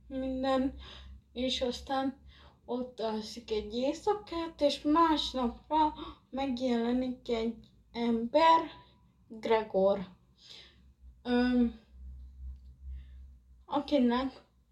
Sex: female